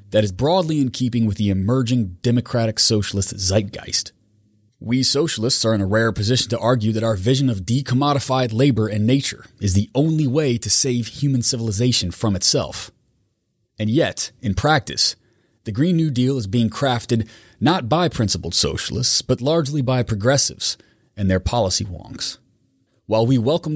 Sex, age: male, 30-49